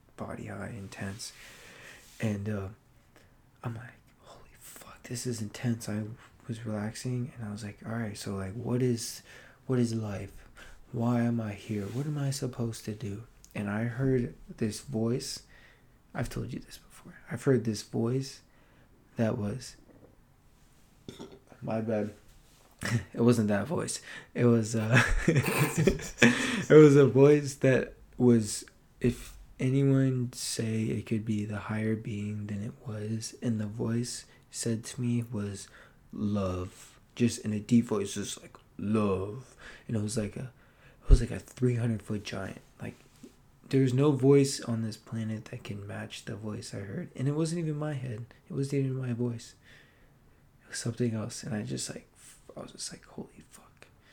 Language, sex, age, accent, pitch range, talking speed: English, male, 20-39, American, 110-135 Hz, 165 wpm